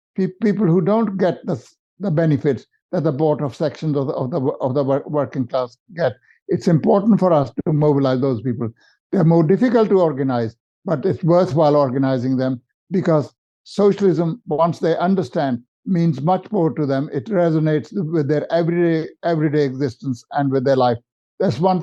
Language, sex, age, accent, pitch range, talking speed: English, male, 60-79, Indian, 140-185 Hz, 170 wpm